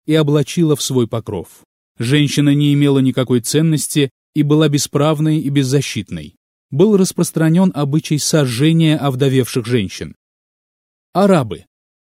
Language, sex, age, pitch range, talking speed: Russian, male, 30-49, 125-160 Hz, 110 wpm